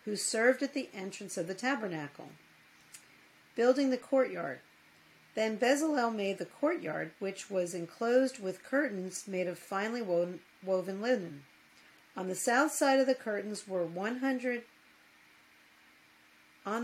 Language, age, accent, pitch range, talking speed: English, 50-69, American, 185-250 Hz, 130 wpm